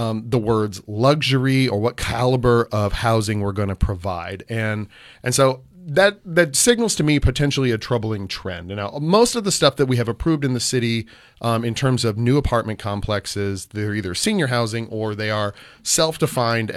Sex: male